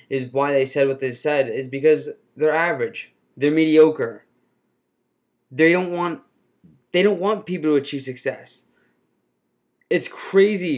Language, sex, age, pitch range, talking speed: English, male, 20-39, 140-170 Hz, 140 wpm